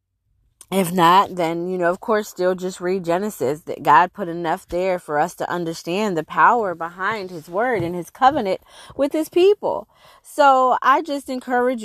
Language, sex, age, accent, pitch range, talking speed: English, female, 20-39, American, 175-240 Hz, 175 wpm